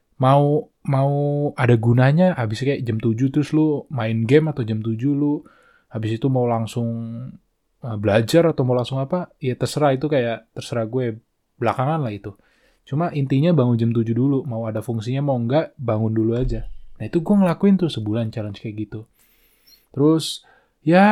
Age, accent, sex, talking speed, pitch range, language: 20-39, native, male, 170 wpm, 115-150 Hz, Indonesian